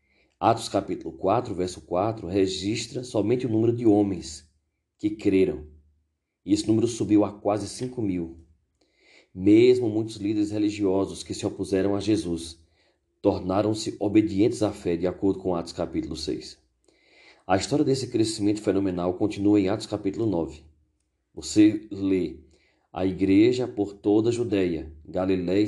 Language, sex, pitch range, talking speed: Portuguese, male, 90-110 Hz, 140 wpm